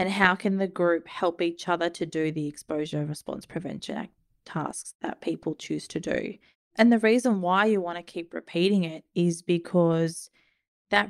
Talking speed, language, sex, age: 185 wpm, English, female, 20-39